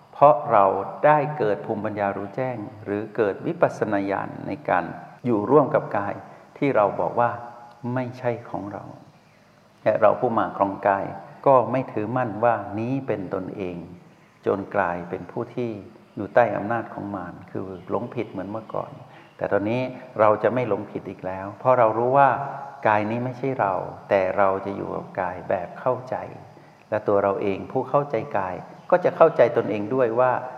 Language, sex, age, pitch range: Thai, male, 60-79, 100-125 Hz